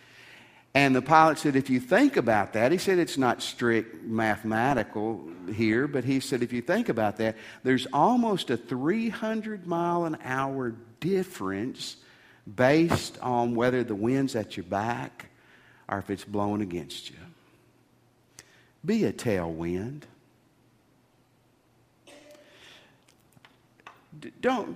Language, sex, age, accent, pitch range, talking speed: English, male, 50-69, American, 110-155 Hz, 115 wpm